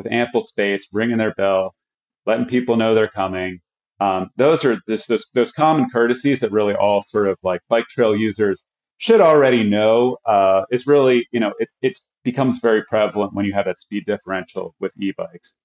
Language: English